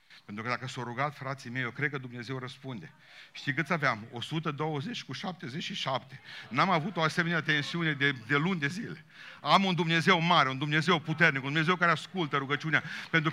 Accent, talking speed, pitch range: native, 185 wpm, 150-220 Hz